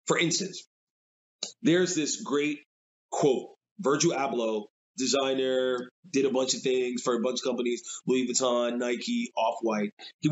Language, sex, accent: English, male, American